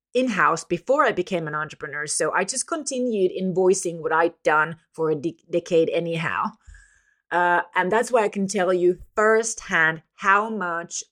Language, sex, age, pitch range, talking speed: English, female, 30-49, 165-230 Hz, 155 wpm